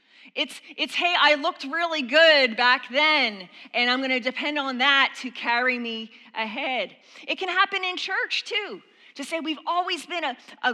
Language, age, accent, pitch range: English, 30-49, American, 235-300 Hz